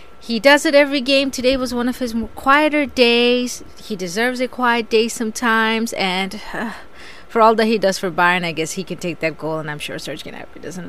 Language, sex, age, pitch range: English, female, 30-49, 195-265 Hz